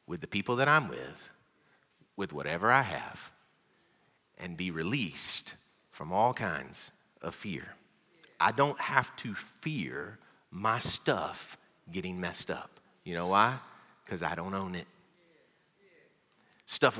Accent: American